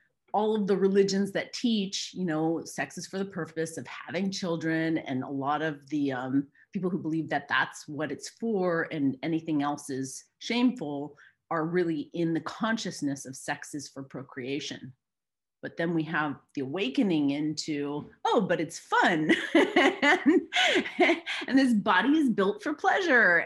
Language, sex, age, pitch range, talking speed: English, female, 30-49, 150-205 Hz, 165 wpm